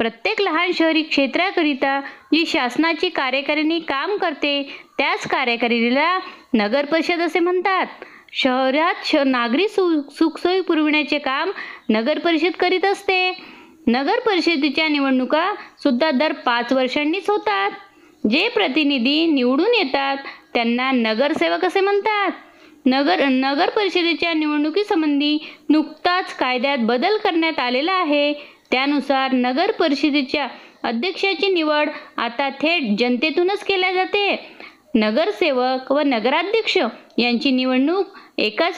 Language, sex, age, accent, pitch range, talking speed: Marathi, female, 20-39, native, 275-365 Hz, 105 wpm